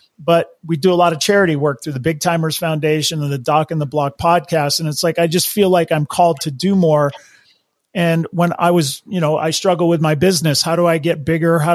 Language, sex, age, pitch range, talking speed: English, male, 40-59, 160-185 Hz, 250 wpm